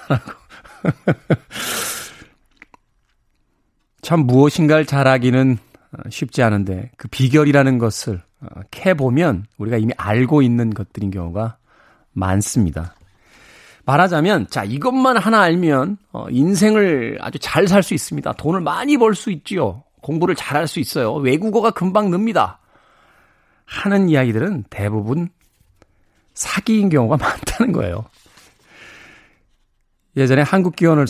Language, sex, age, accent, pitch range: Korean, male, 40-59, native, 105-150 Hz